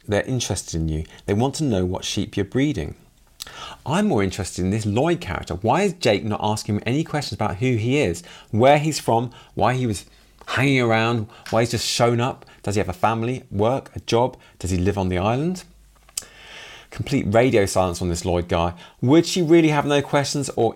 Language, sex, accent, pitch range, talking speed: English, male, British, 95-125 Hz, 210 wpm